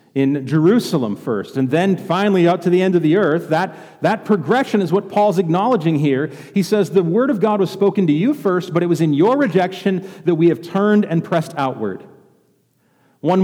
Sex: male